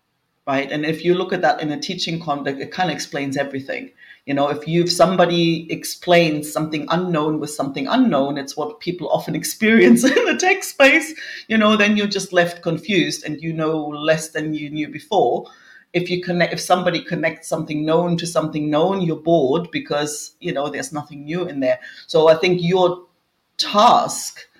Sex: female